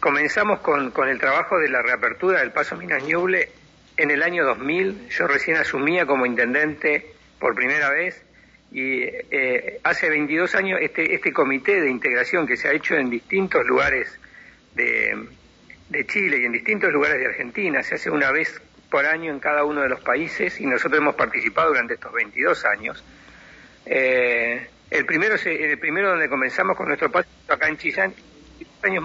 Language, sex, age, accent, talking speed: Spanish, male, 60-79, Argentinian, 175 wpm